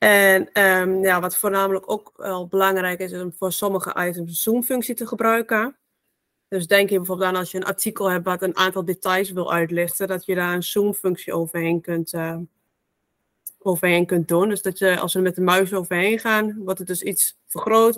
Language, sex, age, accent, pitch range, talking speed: Dutch, female, 20-39, Dutch, 175-200 Hz, 200 wpm